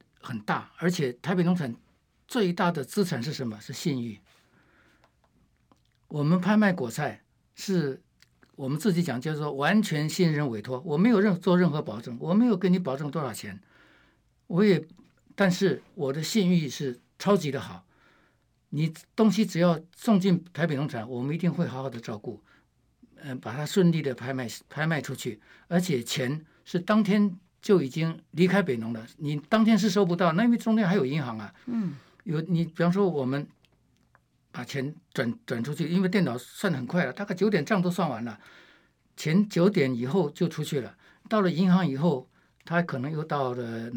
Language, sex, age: Chinese, male, 60-79